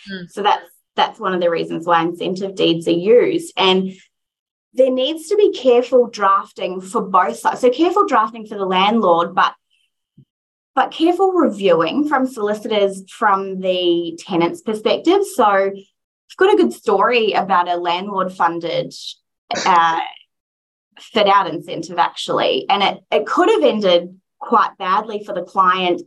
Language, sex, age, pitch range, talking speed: English, female, 20-39, 175-240 Hz, 145 wpm